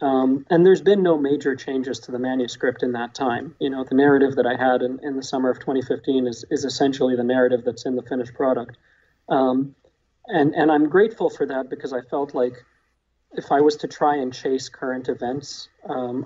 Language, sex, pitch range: English, male, 125-150 Hz